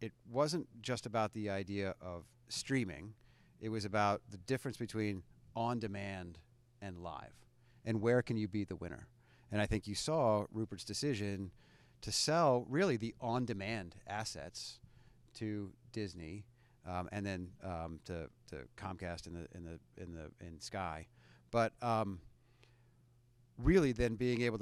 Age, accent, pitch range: 40-59, American, 100-120 Hz